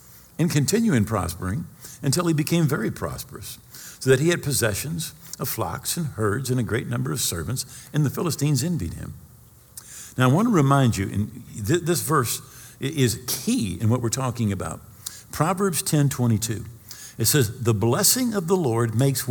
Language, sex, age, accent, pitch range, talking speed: English, male, 50-69, American, 115-150 Hz, 175 wpm